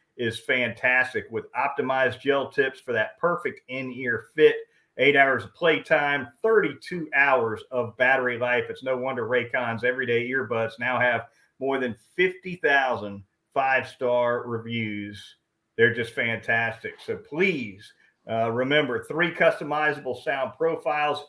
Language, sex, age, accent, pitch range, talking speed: English, male, 40-59, American, 120-150 Hz, 125 wpm